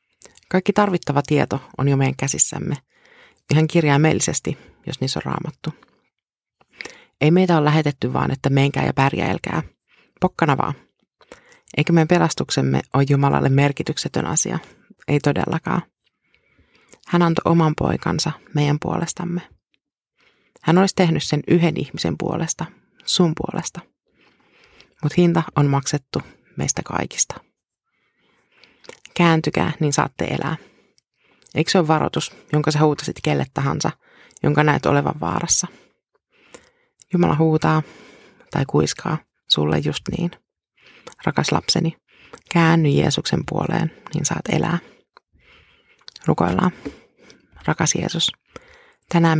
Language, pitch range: Finnish, 150-175 Hz